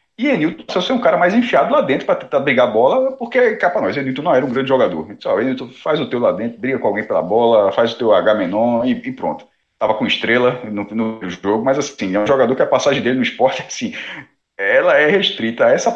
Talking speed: 250 wpm